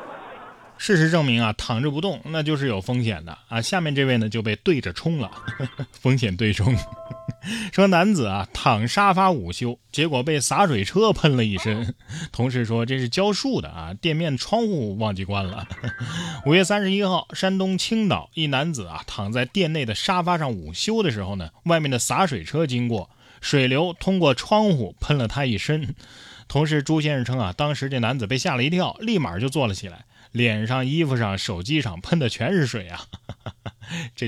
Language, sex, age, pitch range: Chinese, male, 20-39, 110-160 Hz